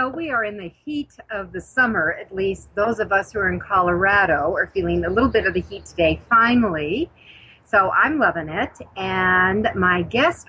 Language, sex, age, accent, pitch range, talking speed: English, female, 40-59, American, 175-230 Hz, 200 wpm